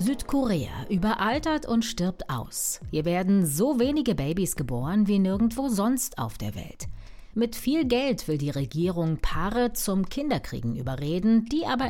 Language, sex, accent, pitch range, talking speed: German, female, German, 145-240 Hz, 145 wpm